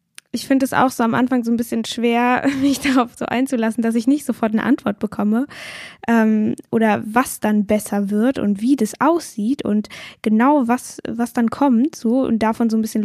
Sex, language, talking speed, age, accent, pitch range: female, German, 200 wpm, 10-29, German, 220-255 Hz